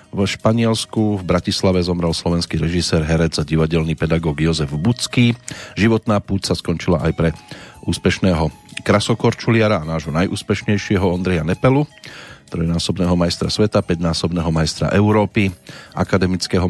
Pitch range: 85-105 Hz